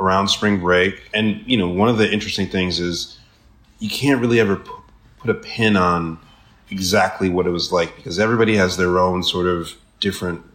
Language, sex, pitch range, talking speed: English, male, 85-105 Hz, 195 wpm